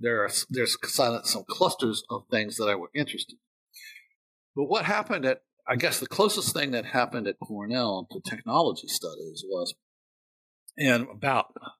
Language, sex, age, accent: English, male, 50-69, American